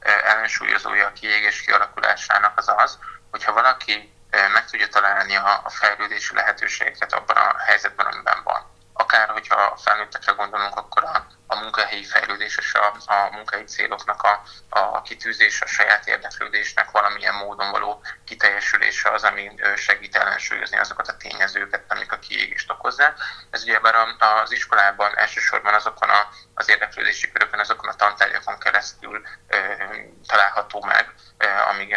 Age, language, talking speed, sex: 20-39, Hungarian, 135 wpm, male